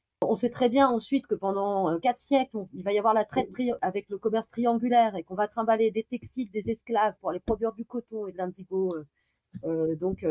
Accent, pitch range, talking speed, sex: French, 185-250 Hz, 210 wpm, female